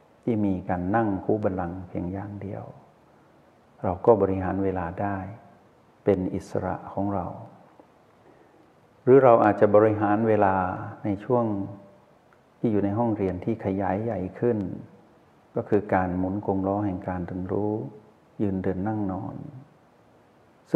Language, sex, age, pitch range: Thai, male, 60-79, 95-115 Hz